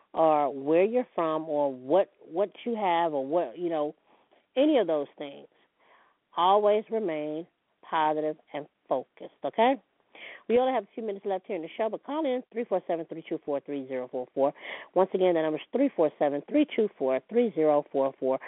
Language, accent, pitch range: English, American, 150-200 Hz